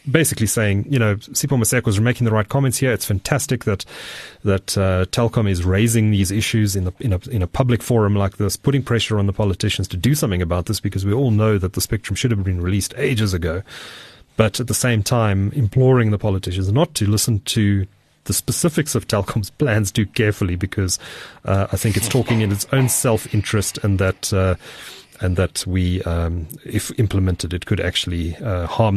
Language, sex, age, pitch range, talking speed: English, male, 30-49, 95-110 Hz, 205 wpm